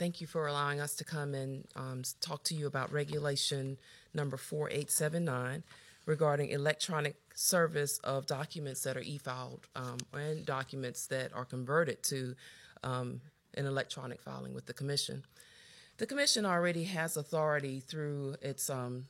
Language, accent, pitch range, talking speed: English, American, 130-150 Hz, 140 wpm